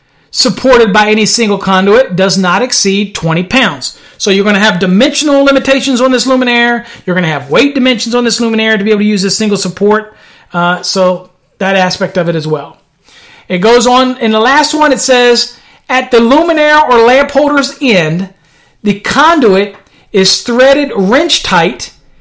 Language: English